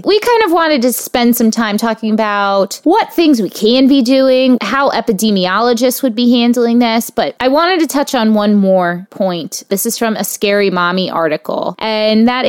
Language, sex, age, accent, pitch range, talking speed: English, female, 20-39, American, 190-250 Hz, 190 wpm